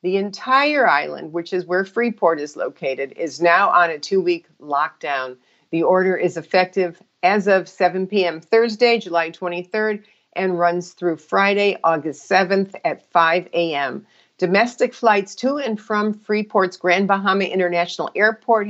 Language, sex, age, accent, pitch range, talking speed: English, female, 50-69, American, 165-205 Hz, 145 wpm